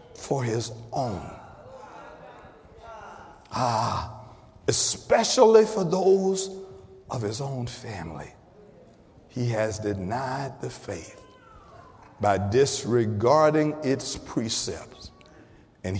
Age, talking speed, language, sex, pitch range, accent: 60-79, 80 wpm, English, male, 95-130 Hz, American